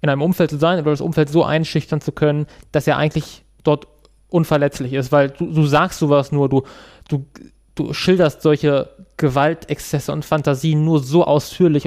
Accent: German